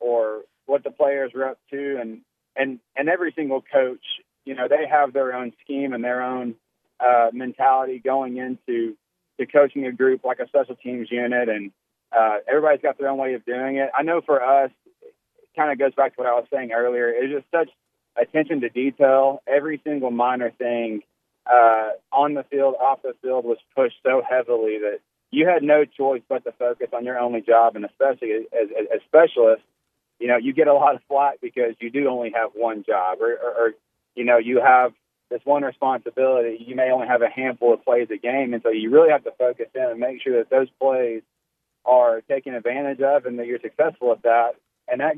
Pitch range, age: 120-150 Hz, 30-49